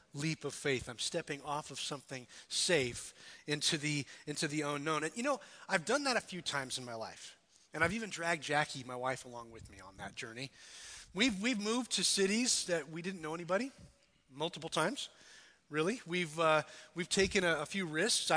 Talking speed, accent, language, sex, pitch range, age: 195 wpm, American, English, male, 150-190 Hz, 30-49